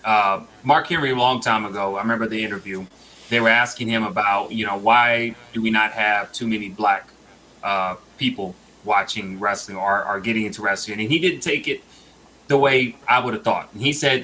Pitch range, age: 115-140 Hz, 30-49